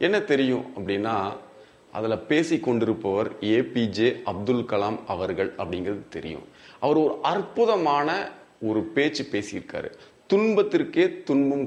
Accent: native